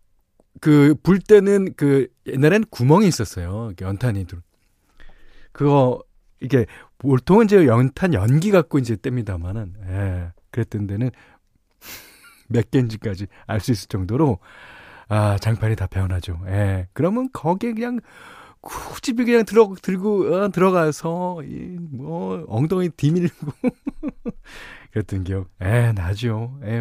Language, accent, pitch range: Korean, native, 100-155 Hz